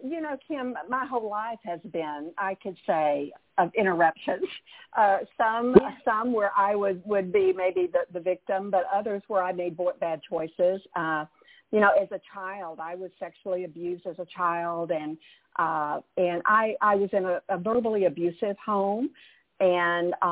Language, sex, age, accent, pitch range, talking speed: English, female, 50-69, American, 175-220 Hz, 170 wpm